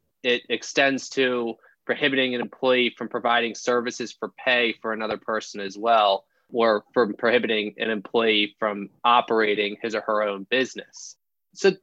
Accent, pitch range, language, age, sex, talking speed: American, 110-135 Hz, English, 20-39, male, 145 wpm